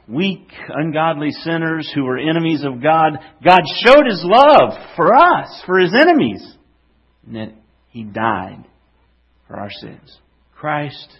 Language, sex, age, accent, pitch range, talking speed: English, male, 50-69, American, 100-135 Hz, 135 wpm